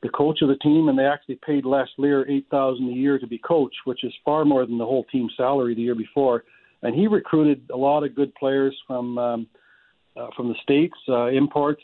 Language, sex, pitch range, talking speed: English, male, 125-145 Hz, 230 wpm